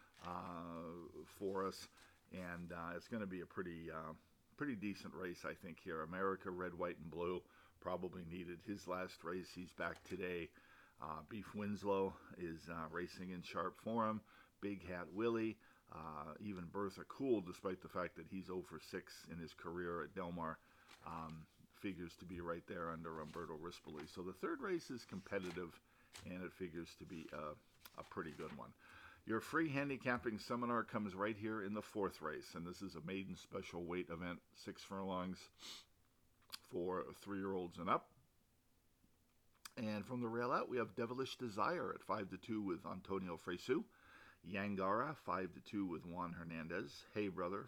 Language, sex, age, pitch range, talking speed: English, male, 50-69, 85-100 Hz, 170 wpm